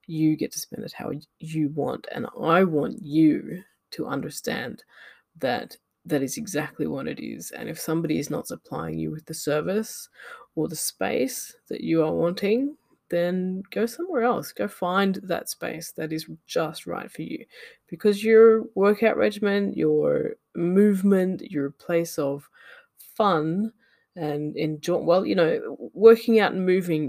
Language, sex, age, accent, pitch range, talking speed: English, female, 20-39, Australian, 155-220 Hz, 155 wpm